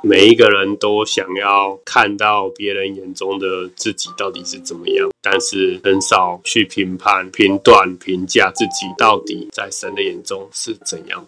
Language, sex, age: Chinese, male, 20-39